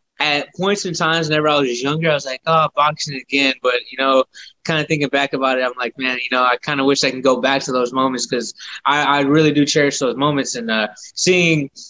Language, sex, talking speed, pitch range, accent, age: English, male, 250 wpm, 135-155 Hz, American, 20-39